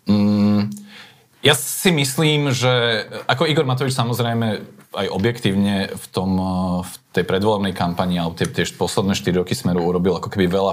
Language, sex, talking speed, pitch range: Slovak, male, 155 wpm, 100-120 Hz